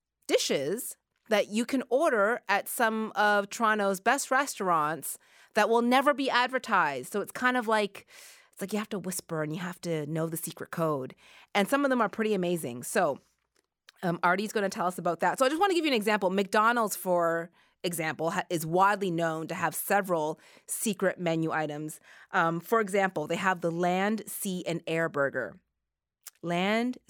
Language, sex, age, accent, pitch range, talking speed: English, female, 30-49, American, 170-225 Hz, 190 wpm